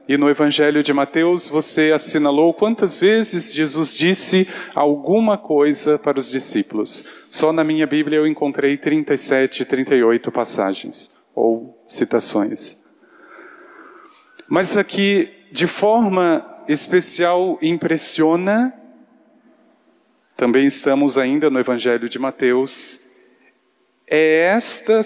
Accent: Brazilian